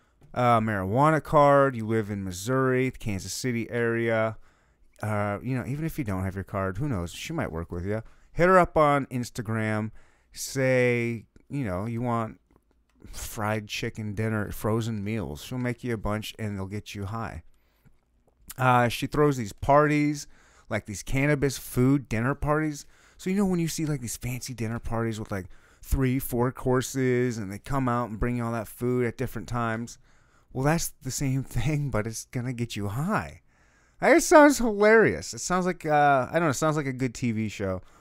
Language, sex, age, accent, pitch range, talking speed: English, male, 30-49, American, 105-135 Hz, 195 wpm